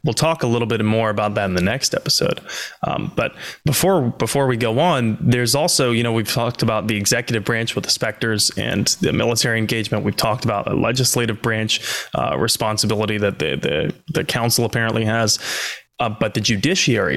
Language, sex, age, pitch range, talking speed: English, male, 20-39, 115-140 Hz, 190 wpm